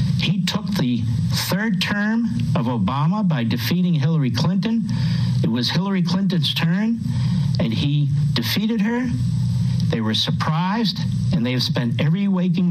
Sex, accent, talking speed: male, American, 135 wpm